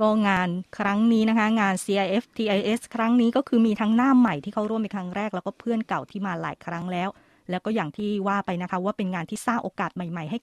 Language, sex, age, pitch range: Thai, female, 20-39, 190-235 Hz